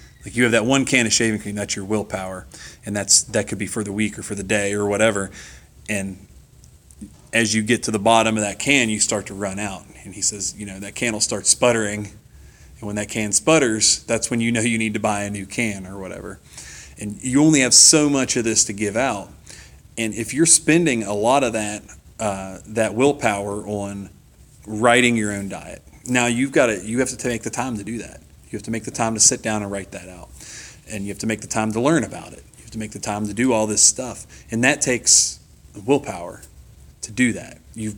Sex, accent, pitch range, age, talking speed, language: male, American, 100-115 Hz, 30-49, 240 wpm, English